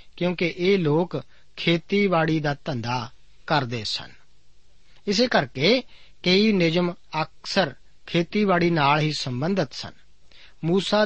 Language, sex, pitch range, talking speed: Punjabi, male, 140-185 Hz, 105 wpm